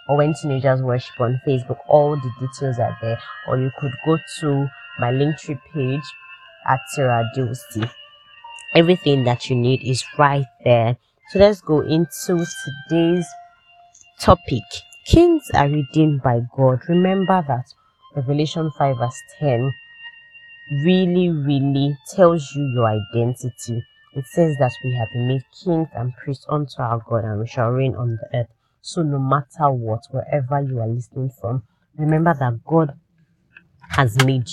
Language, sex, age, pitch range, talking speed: English, female, 20-39, 125-160 Hz, 150 wpm